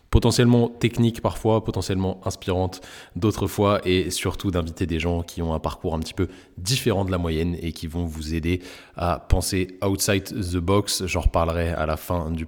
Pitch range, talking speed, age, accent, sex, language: 85-105 Hz, 195 wpm, 20-39, French, male, French